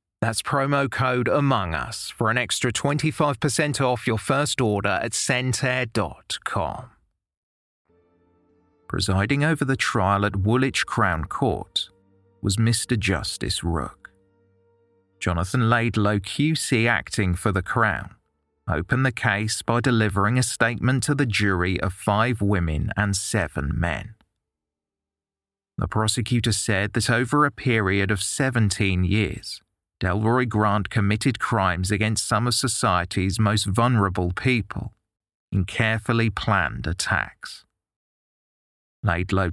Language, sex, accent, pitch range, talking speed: English, male, British, 95-120 Hz, 115 wpm